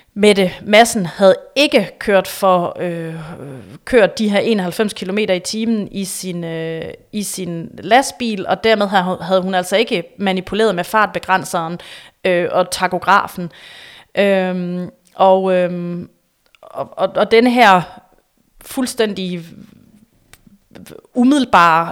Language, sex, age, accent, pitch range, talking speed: Danish, female, 30-49, native, 180-205 Hz, 115 wpm